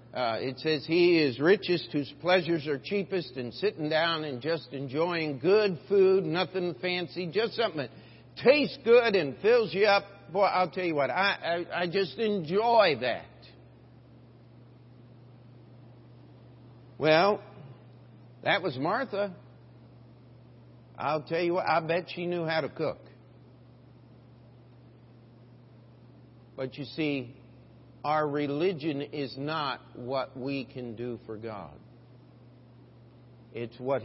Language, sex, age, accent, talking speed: English, male, 60-79, American, 125 wpm